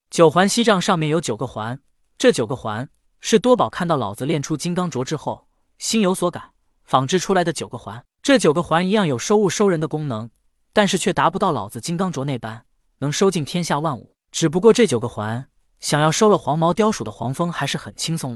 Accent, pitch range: native, 130-200 Hz